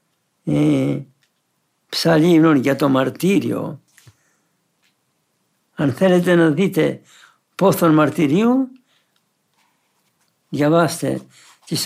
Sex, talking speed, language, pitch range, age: male, 60 wpm, Greek, 140-185 Hz, 60-79